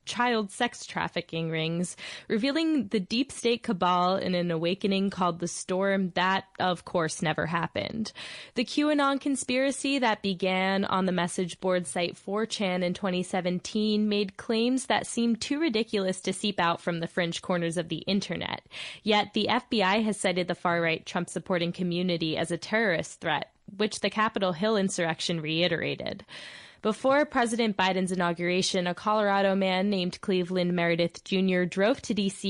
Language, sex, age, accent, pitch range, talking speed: English, female, 20-39, American, 175-215 Hz, 155 wpm